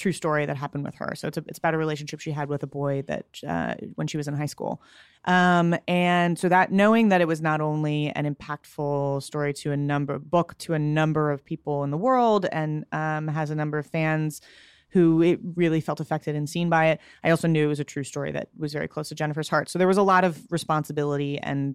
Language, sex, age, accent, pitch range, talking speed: English, female, 30-49, American, 150-165 Hz, 250 wpm